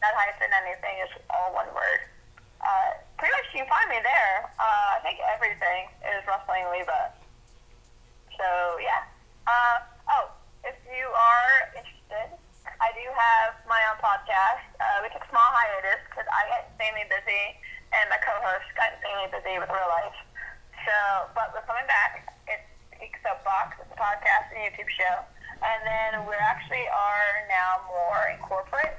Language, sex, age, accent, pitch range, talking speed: English, female, 20-39, American, 185-250 Hz, 160 wpm